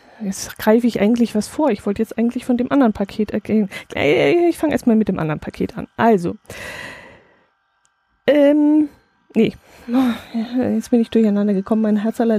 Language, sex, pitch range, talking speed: German, female, 210-255 Hz, 165 wpm